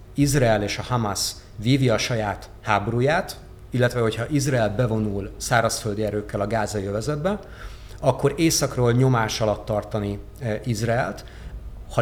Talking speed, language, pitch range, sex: 120 wpm, Hungarian, 105-125 Hz, male